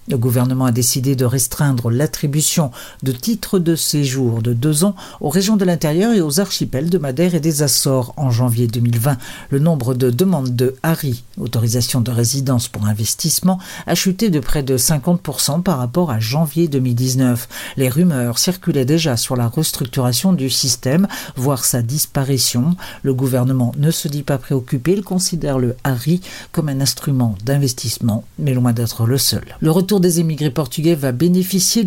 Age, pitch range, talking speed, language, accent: 50-69, 125-170 Hz, 170 wpm, Portuguese, French